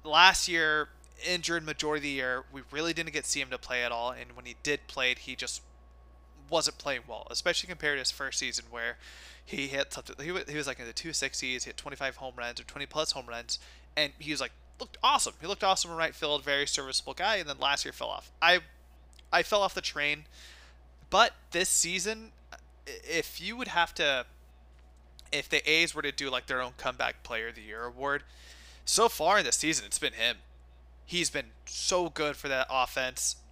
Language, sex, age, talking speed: English, male, 20-39, 215 wpm